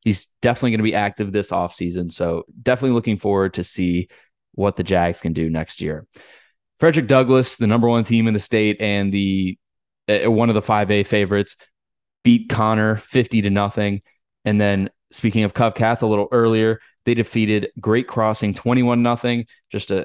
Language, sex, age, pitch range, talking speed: English, male, 20-39, 95-115 Hz, 185 wpm